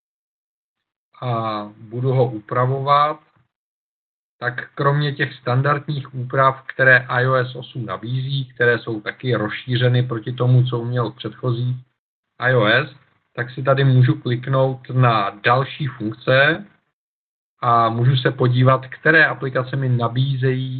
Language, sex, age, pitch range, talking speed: Czech, male, 50-69, 115-130 Hz, 115 wpm